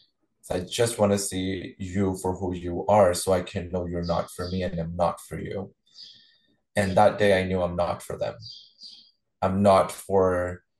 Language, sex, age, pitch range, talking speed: English, male, 20-39, 90-100 Hz, 195 wpm